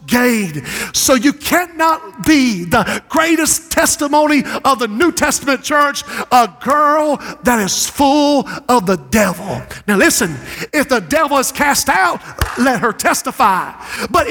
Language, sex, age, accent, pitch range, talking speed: English, male, 50-69, American, 245-305 Hz, 140 wpm